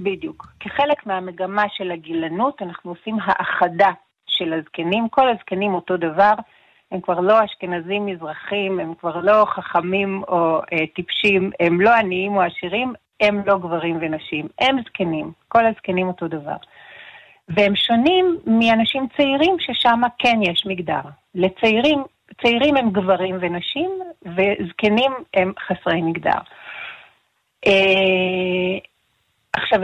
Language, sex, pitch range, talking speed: Hebrew, female, 185-230 Hz, 120 wpm